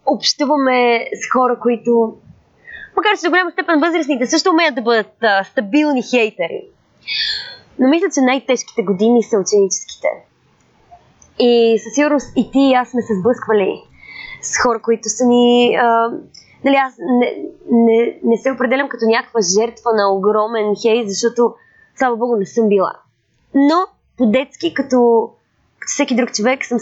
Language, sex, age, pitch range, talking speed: Bulgarian, female, 20-39, 215-255 Hz, 150 wpm